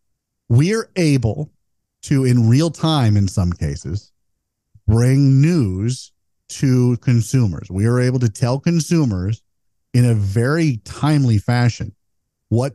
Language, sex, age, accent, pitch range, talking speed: English, male, 40-59, American, 105-140 Hz, 120 wpm